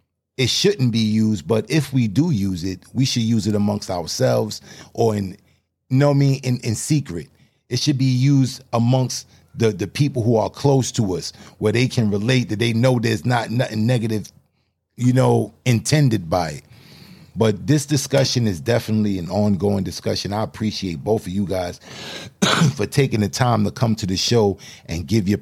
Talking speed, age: 190 wpm, 30-49